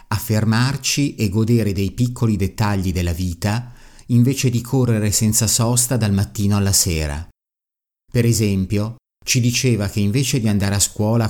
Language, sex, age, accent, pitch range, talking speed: Italian, male, 50-69, native, 95-120 Hz, 145 wpm